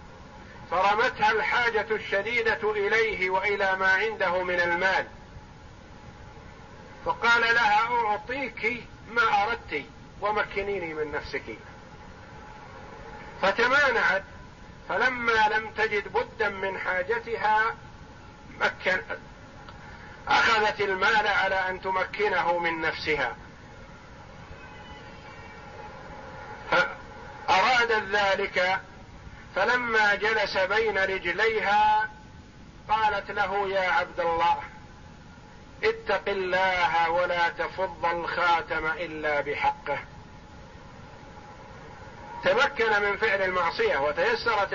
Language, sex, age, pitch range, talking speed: Arabic, male, 50-69, 180-245 Hz, 70 wpm